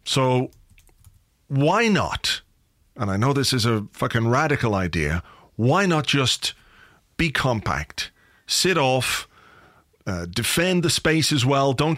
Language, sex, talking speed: English, male, 130 wpm